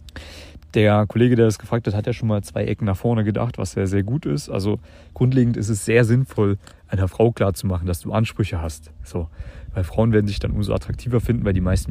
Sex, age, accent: male, 30-49, German